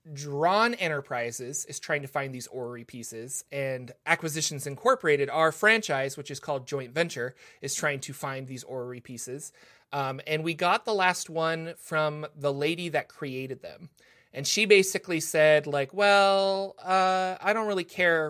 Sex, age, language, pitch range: male, 30-49, English, 140-170 Hz